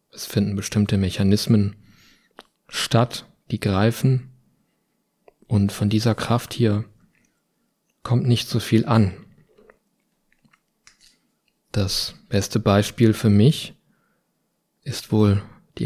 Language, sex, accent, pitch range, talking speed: German, male, German, 105-120 Hz, 95 wpm